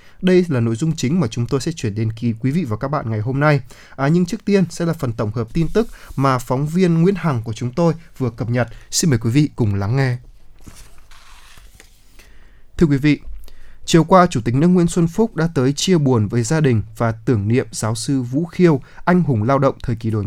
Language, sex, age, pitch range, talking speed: Vietnamese, male, 20-39, 115-160 Hz, 240 wpm